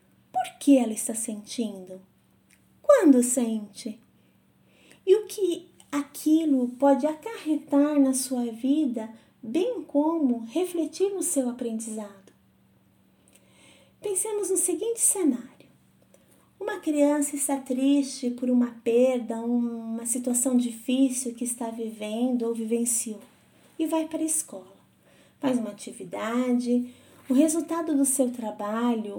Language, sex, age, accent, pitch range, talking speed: Portuguese, female, 30-49, Brazilian, 235-305 Hz, 110 wpm